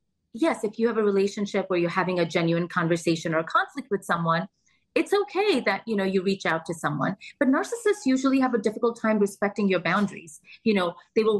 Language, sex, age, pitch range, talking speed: English, female, 30-49, 180-235 Hz, 215 wpm